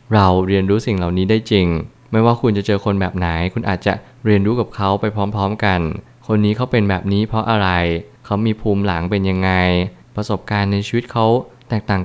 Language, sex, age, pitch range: Thai, male, 20-39, 95-115 Hz